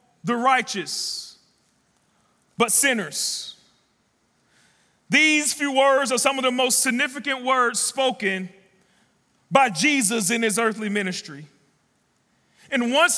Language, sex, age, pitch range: English, male, 40-59, 220-280 Hz